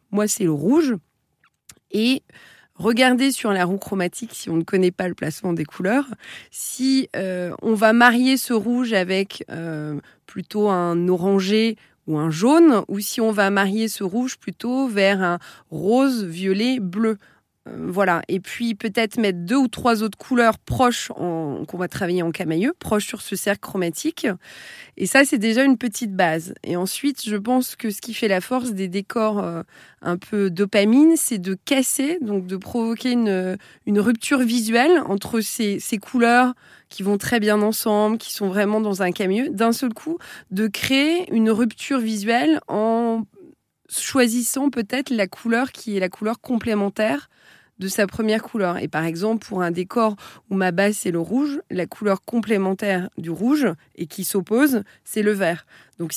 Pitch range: 190-240 Hz